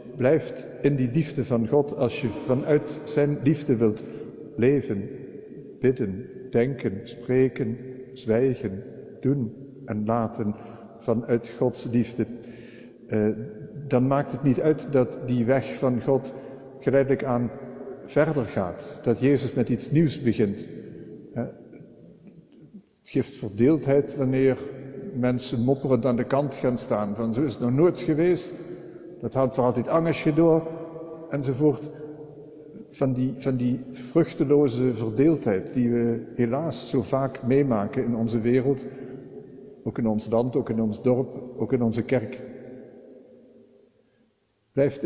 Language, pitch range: Dutch, 115-140 Hz